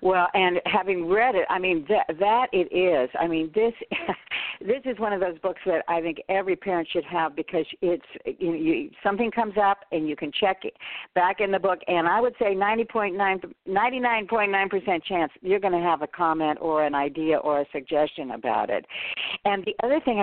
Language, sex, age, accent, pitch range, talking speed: English, female, 60-79, American, 170-235 Hz, 205 wpm